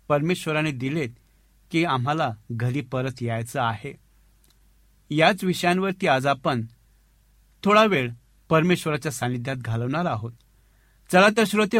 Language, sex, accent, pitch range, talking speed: Marathi, male, native, 125-180 Hz, 105 wpm